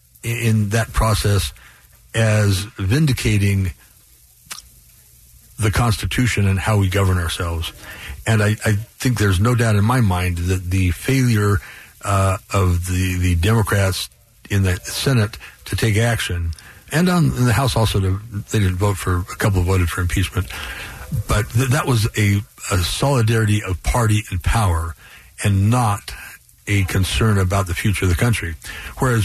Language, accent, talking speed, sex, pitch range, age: English, American, 145 wpm, male, 95-125 Hz, 60-79